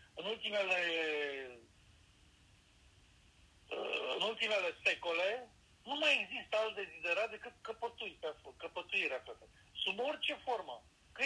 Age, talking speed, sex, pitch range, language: 50-69, 100 wpm, male, 145-190 Hz, Romanian